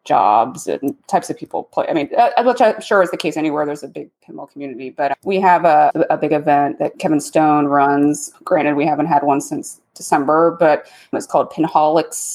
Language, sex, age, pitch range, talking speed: English, female, 20-39, 150-185 Hz, 210 wpm